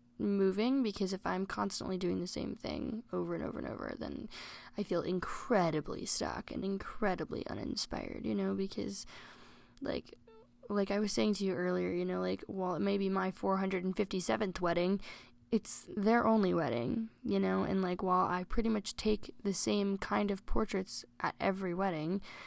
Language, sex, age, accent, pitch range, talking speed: English, female, 10-29, American, 175-205 Hz, 170 wpm